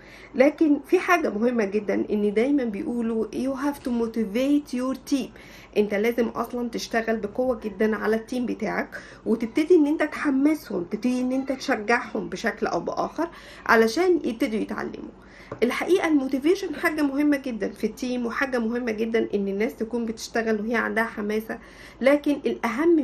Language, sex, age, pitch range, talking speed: Arabic, female, 50-69, 220-285 Hz, 145 wpm